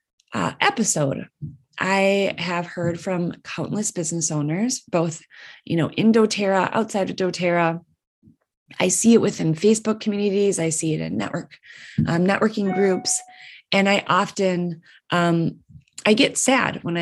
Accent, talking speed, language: American, 140 wpm, English